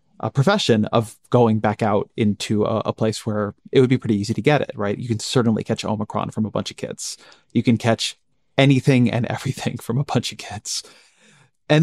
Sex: male